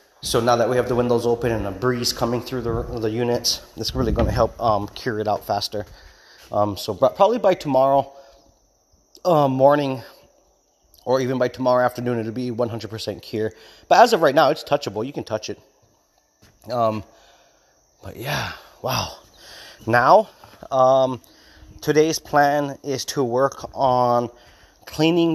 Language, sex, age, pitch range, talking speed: English, male, 30-49, 110-135 Hz, 155 wpm